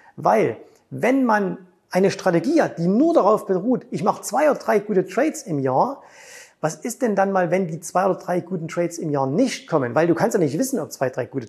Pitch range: 160-215 Hz